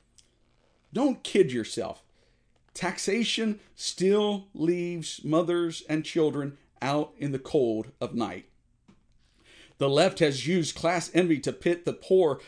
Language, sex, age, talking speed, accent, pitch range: English, male, 50-69, 120 wpm, American, 145-185 Hz